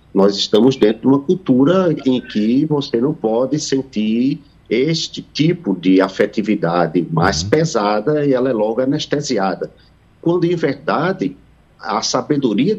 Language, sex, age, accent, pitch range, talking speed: Portuguese, male, 50-69, Brazilian, 100-155 Hz, 130 wpm